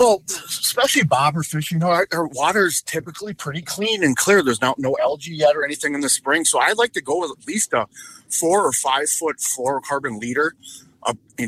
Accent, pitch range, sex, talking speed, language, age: American, 130-170 Hz, male, 220 wpm, English, 30-49